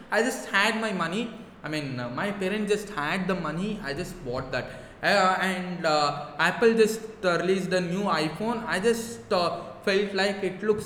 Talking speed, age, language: 195 wpm, 20-39, English